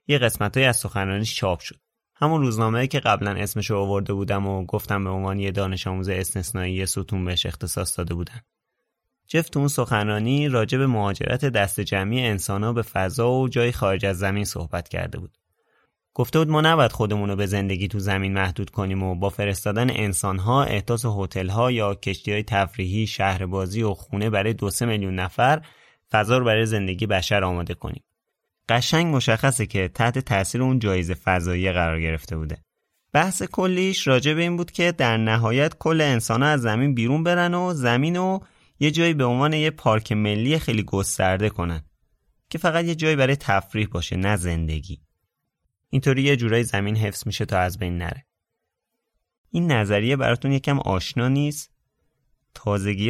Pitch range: 95-130 Hz